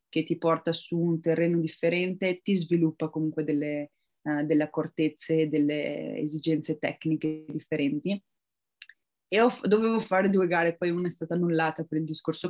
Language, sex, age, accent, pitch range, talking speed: Italian, female, 20-39, native, 160-190 Hz, 155 wpm